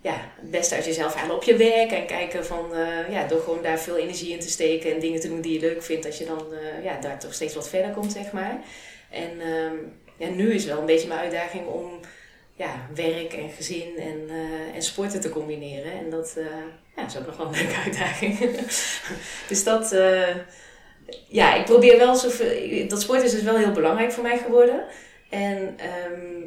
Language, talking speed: Dutch, 220 wpm